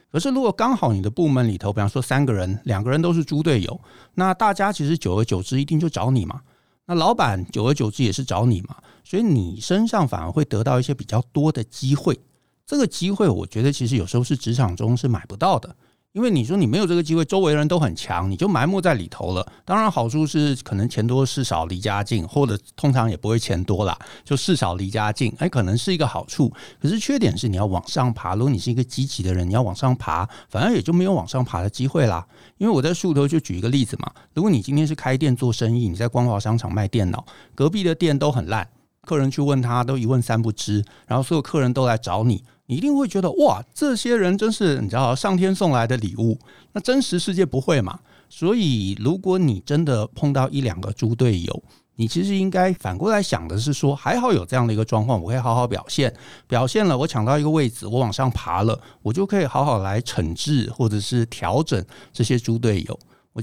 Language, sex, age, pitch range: Chinese, male, 60-79, 110-155 Hz